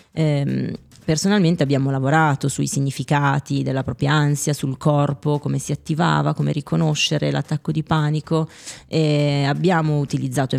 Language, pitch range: Italian, 140-165 Hz